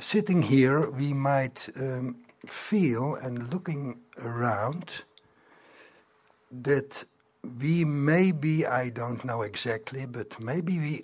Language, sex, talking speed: English, male, 110 wpm